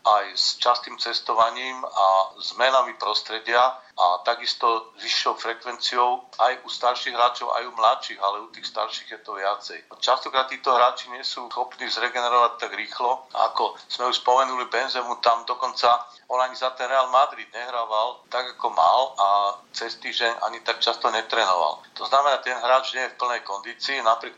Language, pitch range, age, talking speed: Slovak, 105-120 Hz, 50-69, 170 wpm